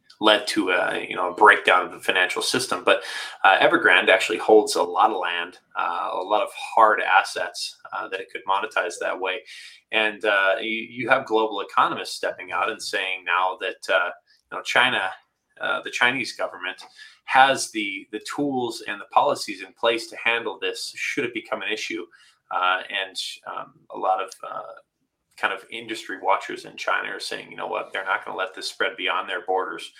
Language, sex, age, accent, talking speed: English, male, 20-39, American, 200 wpm